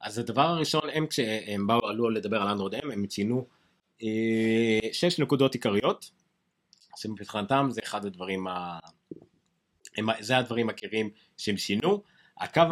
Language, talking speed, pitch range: Hebrew, 130 wpm, 110-155 Hz